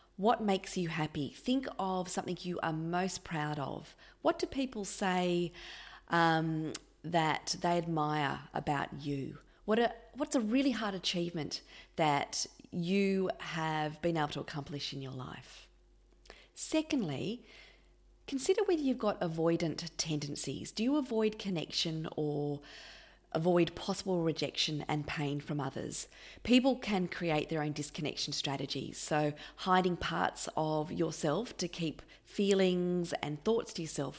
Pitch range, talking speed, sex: 150-200 Hz, 135 wpm, female